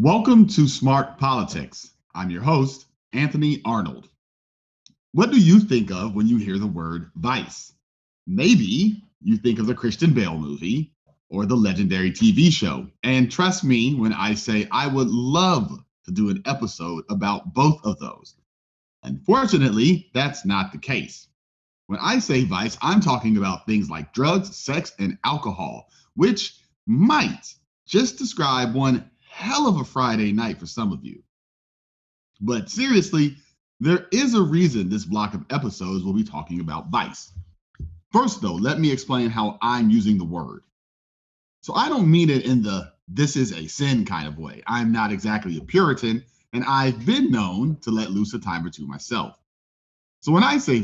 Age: 30-49